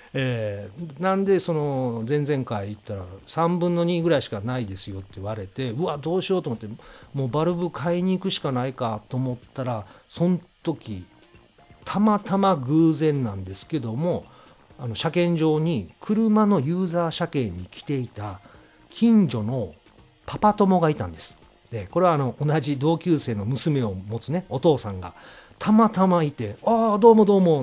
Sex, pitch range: male, 110-170 Hz